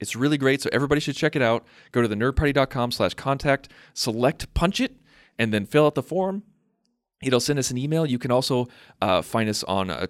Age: 30-49